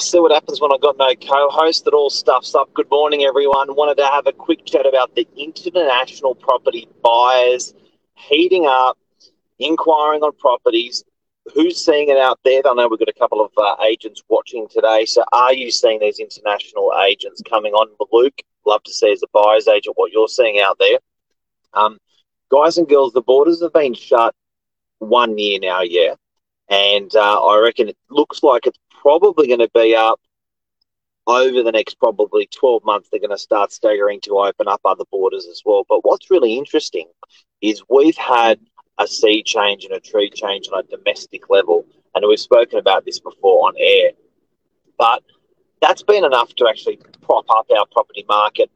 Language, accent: English, Australian